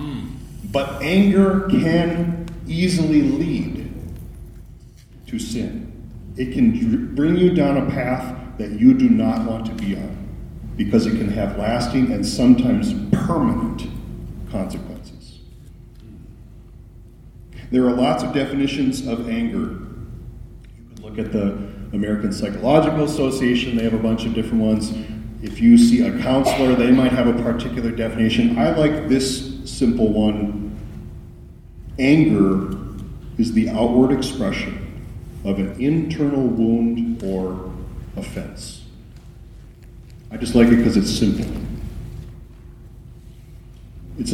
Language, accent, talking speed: English, American, 120 wpm